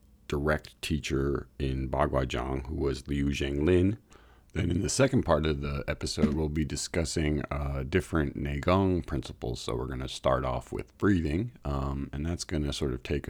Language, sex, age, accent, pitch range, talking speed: English, male, 40-59, American, 70-90 Hz, 185 wpm